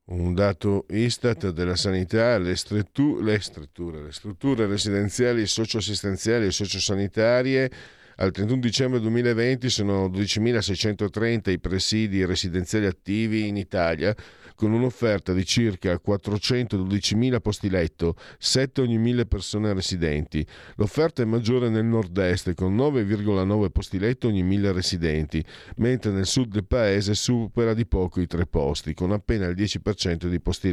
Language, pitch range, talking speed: Italian, 85-110 Hz, 125 wpm